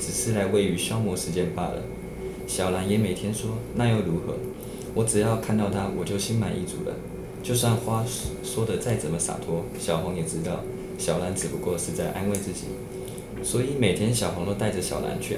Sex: male